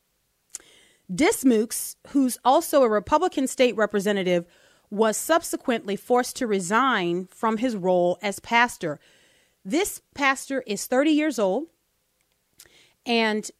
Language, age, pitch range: English, 30-49, 200-255 Hz